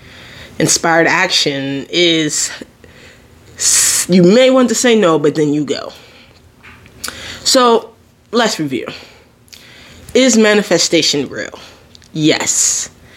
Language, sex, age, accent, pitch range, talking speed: English, female, 20-39, American, 155-220 Hz, 90 wpm